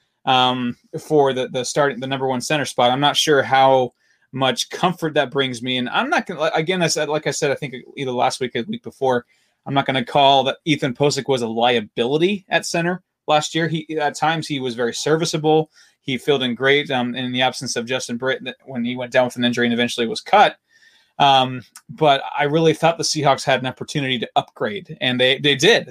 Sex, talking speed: male, 225 wpm